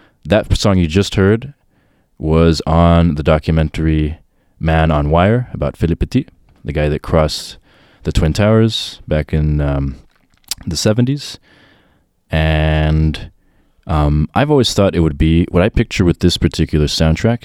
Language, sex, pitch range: English, male, 70-90 Hz